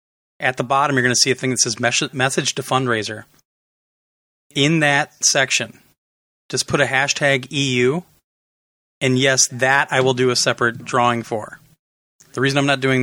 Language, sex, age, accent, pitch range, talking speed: English, male, 30-49, American, 120-140 Hz, 170 wpm